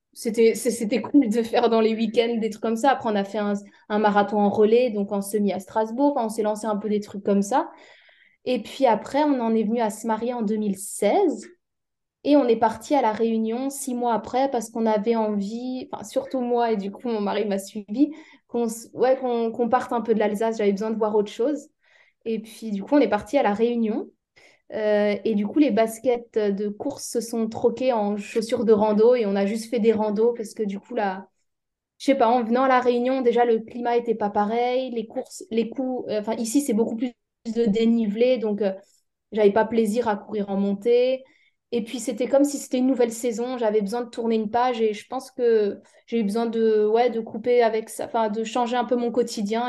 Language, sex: French, female